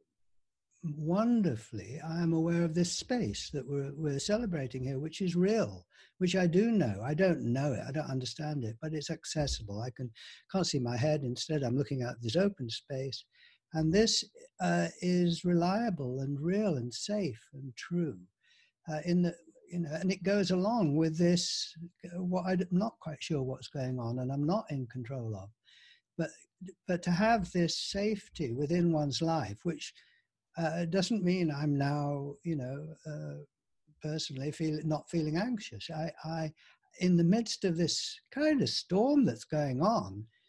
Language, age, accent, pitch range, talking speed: English, 60-79, British, 135-175 Hz, 170 wpm